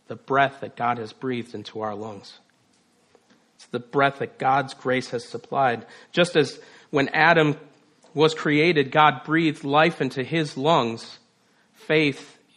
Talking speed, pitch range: 145 wpm, 130-160 Hz